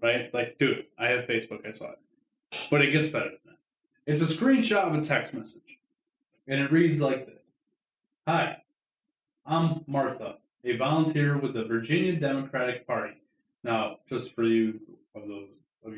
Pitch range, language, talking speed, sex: 125-170 Hz, English, 165 wpm, male